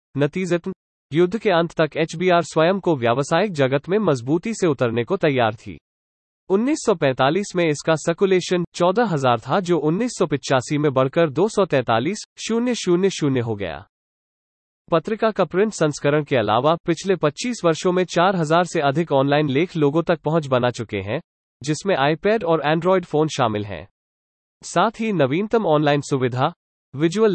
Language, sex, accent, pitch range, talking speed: English, male, Indian, 135-190 Hz, 120 wpm